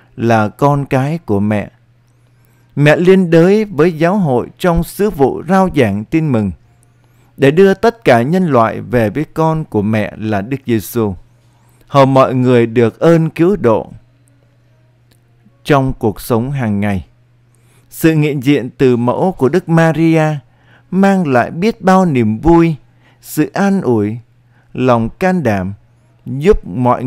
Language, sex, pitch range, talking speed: Vietnamese, male, 120-165 Hz, 145 wpm